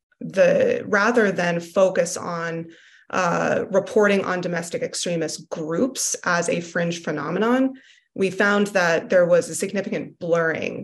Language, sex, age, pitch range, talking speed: Arabic, female, 20-39, 170-225 Hz, 125 wpm